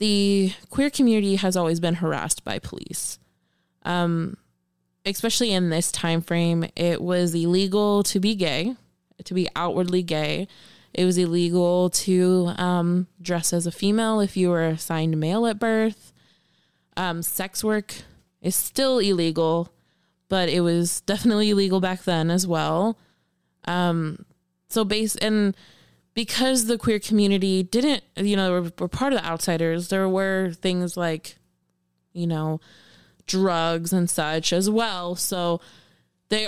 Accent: American